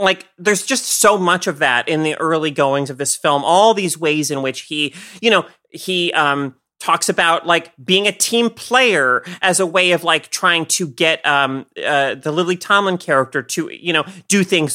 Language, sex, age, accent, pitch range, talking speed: English, male, 30-49, American, 140-190 Hz, 205 wpm